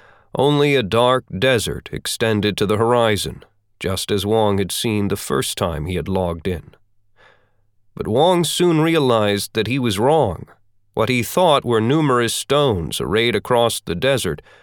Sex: male